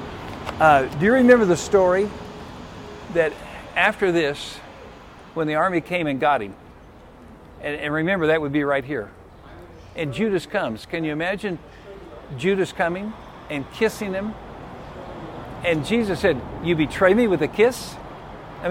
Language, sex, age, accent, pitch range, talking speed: English, male, 60-79, American, 125-205 Hz, 145 wpm